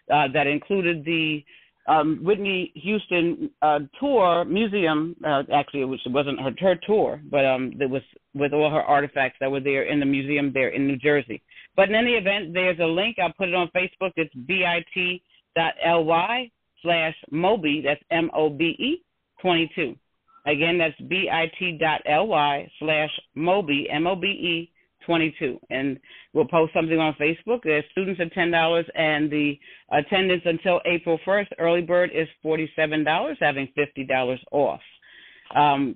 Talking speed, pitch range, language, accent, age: 145 wpm, 155-185 Hz, English, American, 40-59